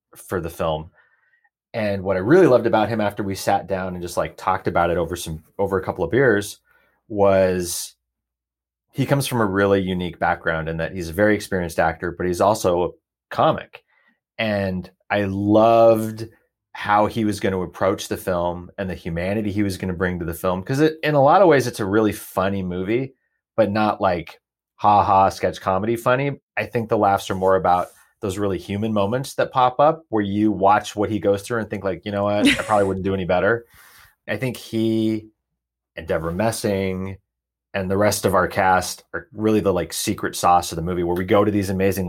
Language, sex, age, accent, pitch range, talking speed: English, male, 30-49, American, 90-110 Hz, 210 wpm